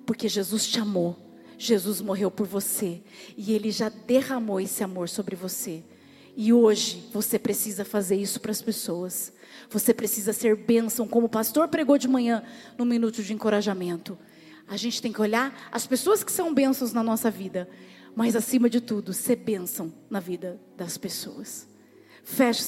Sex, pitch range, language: female, 220-325 Hz, Portuguese